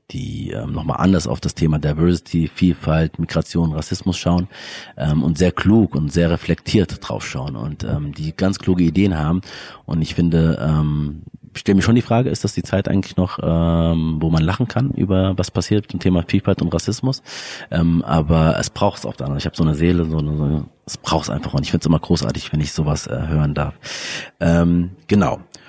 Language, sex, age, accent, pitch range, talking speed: German, male, 30-49, German, 80-95 Hz, 215 wpm